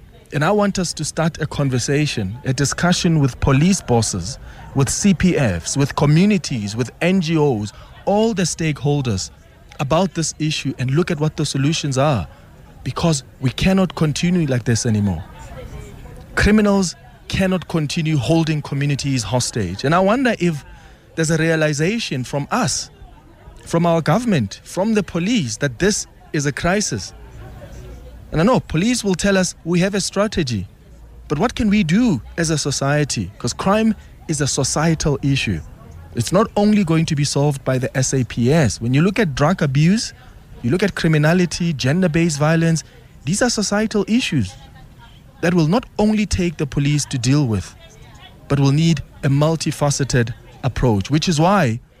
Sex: male